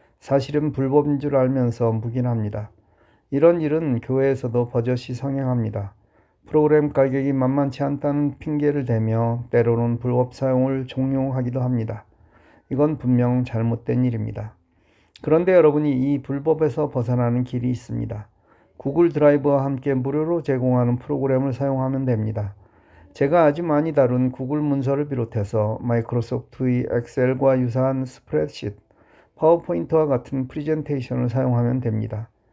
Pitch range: 120-145 Hz